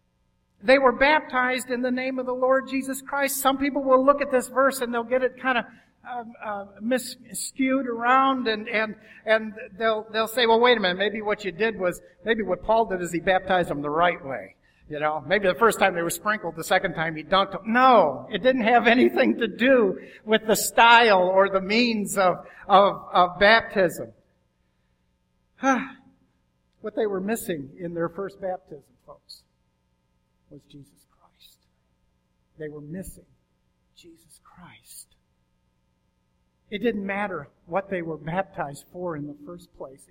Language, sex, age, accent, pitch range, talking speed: English, male, 50-69, American, 165-255 Hz, 175 wpm